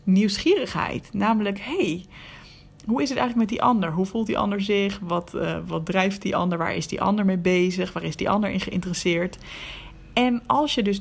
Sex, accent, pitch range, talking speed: female, Dutch, 175-220 Hz, 200 wpm